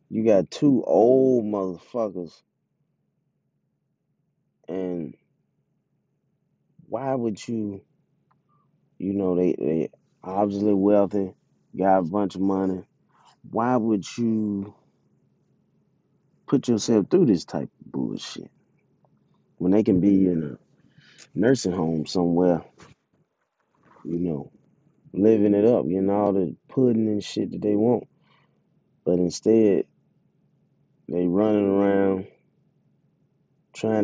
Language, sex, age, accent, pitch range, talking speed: English, male, 20-39, American, 90-110 Hz, 105 wpm